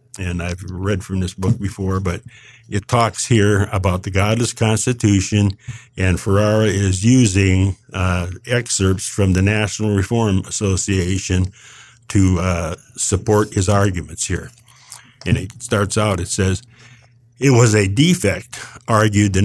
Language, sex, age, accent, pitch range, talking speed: English, male, 50-69, American, 95-120 Hz, 135 wpm